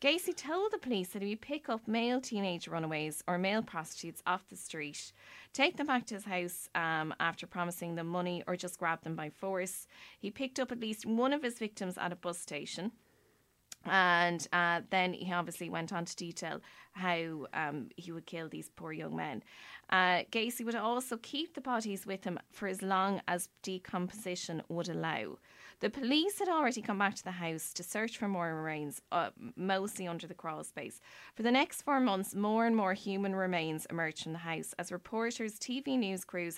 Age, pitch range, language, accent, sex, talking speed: 20-39, 170-225 Hz, English, Irish, female, 200 wpm